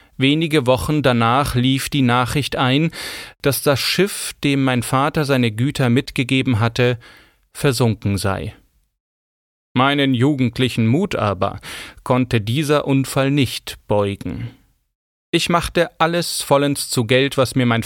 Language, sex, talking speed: German, male, 125 wpm